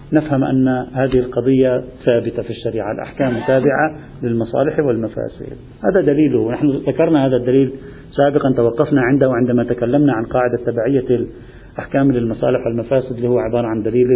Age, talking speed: 50-69, 140 wpm